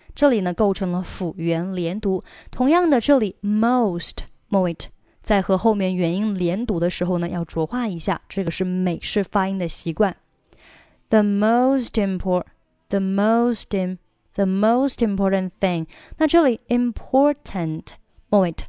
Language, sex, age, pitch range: Chinese, female, 20-39, 175-215 Hz